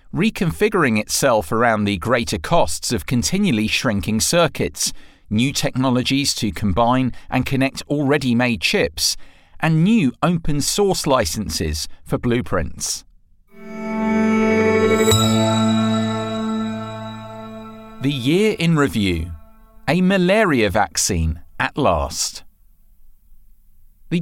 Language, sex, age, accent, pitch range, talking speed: English, male, 40-59, British, 105-150 Hz, 90 wpm